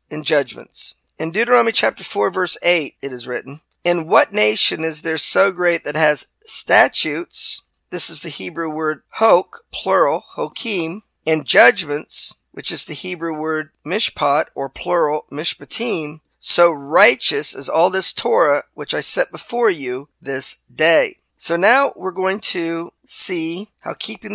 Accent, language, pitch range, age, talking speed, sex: American, English, 145-180 Hz, 40-59, 150 wpm, male